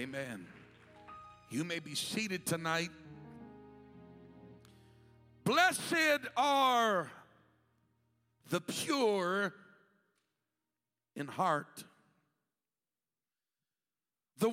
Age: 60-79